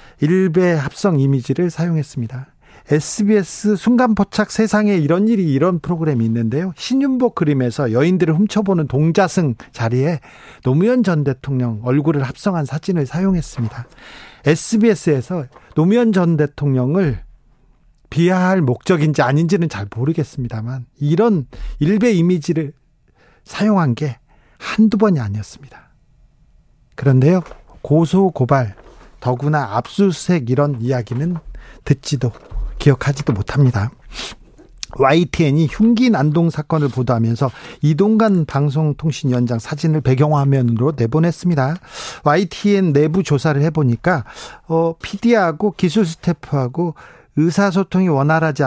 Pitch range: 135-180 Hz